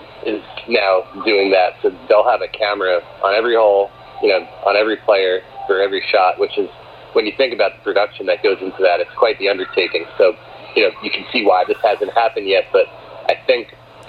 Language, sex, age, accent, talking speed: English, male, 40-59, American, 215 wpm